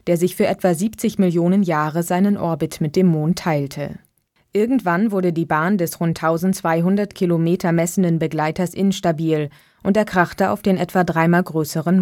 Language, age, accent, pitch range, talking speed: German, 20-39, German, 165-190 Hz, 160 wpm